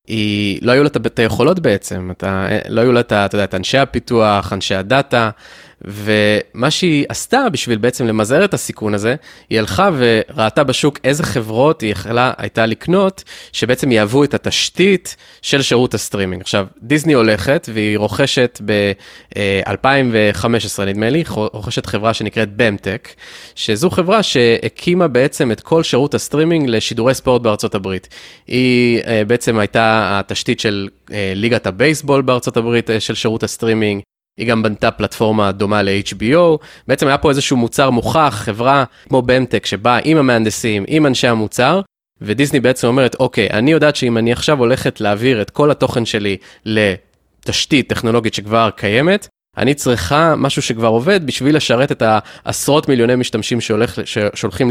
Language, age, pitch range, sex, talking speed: Hebrew, 20-39, 105-135 Hz, male, 145 wpm